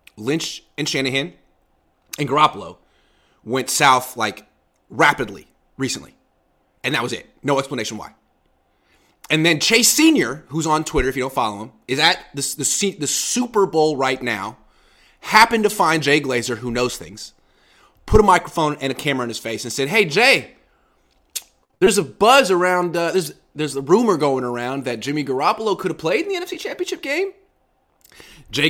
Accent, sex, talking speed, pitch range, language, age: American, male, 170 wpm, 130-205 Hz, English, 30-49